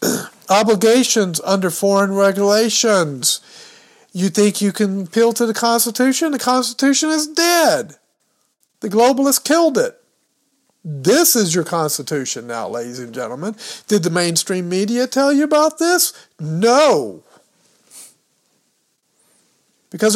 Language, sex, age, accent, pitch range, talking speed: English, male, 50-69, American, 160-235 Hz, 115 wpm